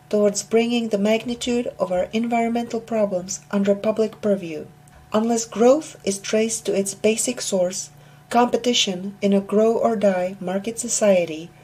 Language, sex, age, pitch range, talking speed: English, female, 40-59, 185-225 Hz, 130 wpm